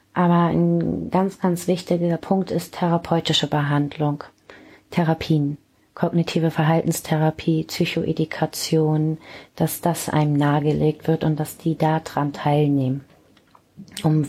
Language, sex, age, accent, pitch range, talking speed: German, female, 30-49, German, 150-175 Hz, 100 wpm